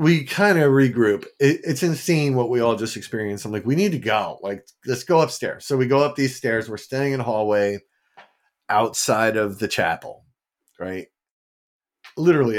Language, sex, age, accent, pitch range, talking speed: English, male, 40-59, American, 105-130 Hz, 185 wpm